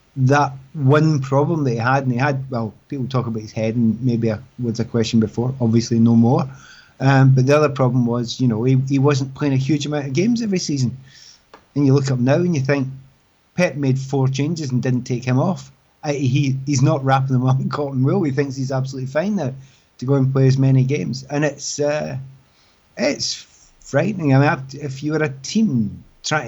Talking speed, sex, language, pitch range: 220 wpm, male, English, 130-150 Hz